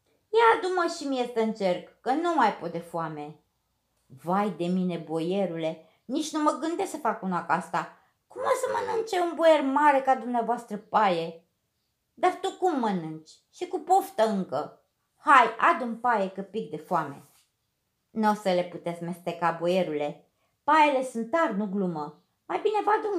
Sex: female